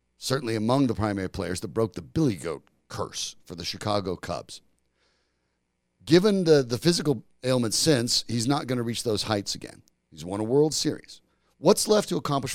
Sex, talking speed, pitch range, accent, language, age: male, 180 wpm, 110-160 Hz, American, English, 40-59